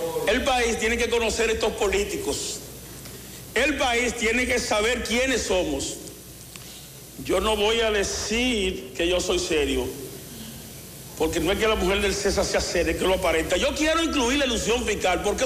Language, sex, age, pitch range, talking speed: Spanish, male, 50-69, 220-315 Hz, 170 wpm